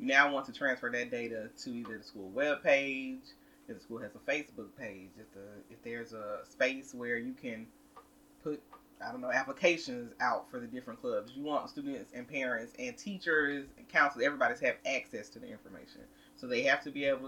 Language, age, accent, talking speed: English, 20-39, American, 210 wpm